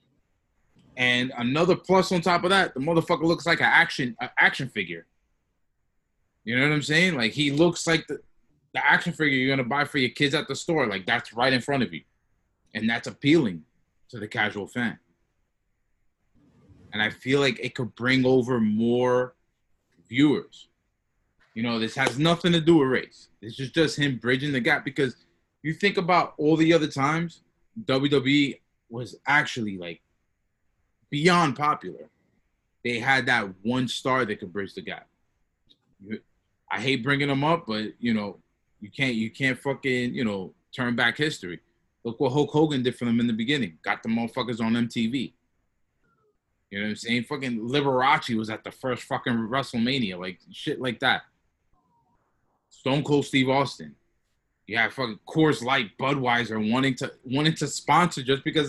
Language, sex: English, male